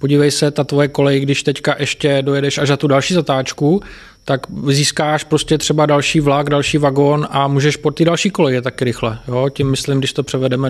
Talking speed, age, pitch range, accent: 200 wpm, 20-39, 130-145 Hz, native